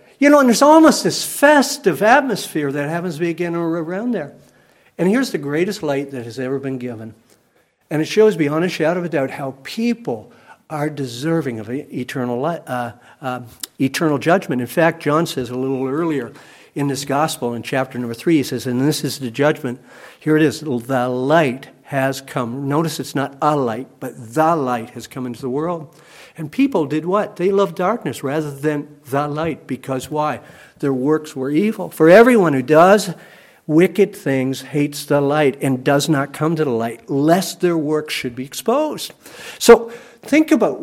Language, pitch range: English, 140-205 Hz